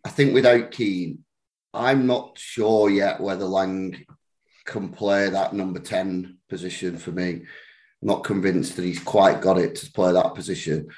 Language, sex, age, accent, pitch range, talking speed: English, male, 30-49, British, 90-105 Hz, 165 wpm